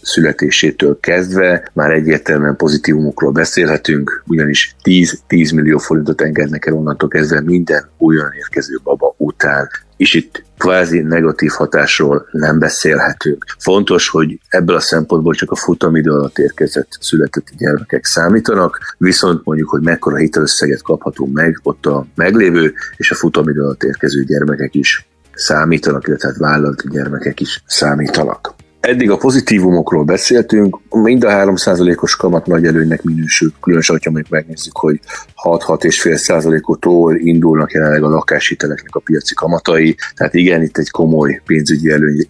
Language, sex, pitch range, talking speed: Hungarian, male, 75-85 Hz, 130 wpm